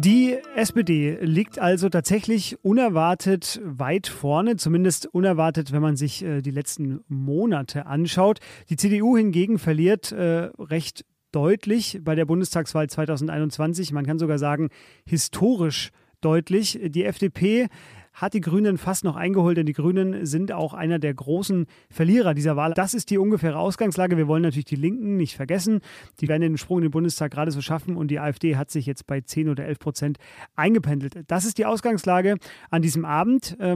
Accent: German